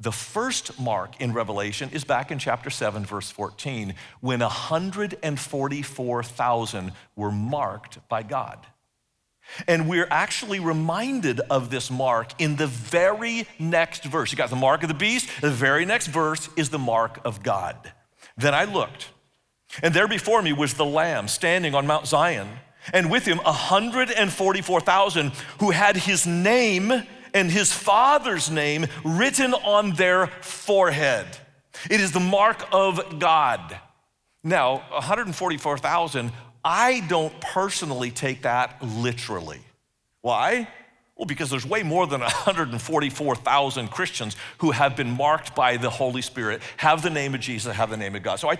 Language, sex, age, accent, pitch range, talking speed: English, male, 50-69, American, 125-185 Hz, 145 wpm